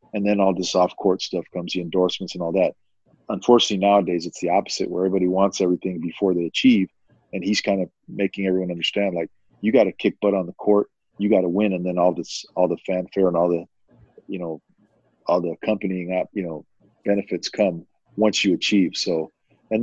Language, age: English, 40-59